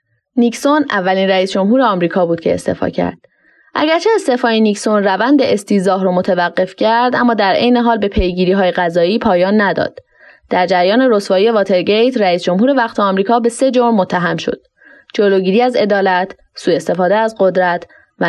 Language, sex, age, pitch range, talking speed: Persian, female, 20-39, 185-240 Hz, 155 wpm